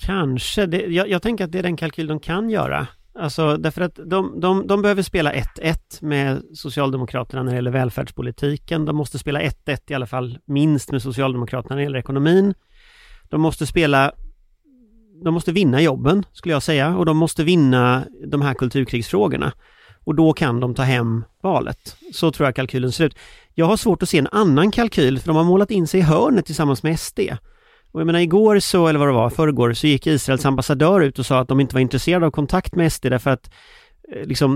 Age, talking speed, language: 30-49, 210 wpm, Swedish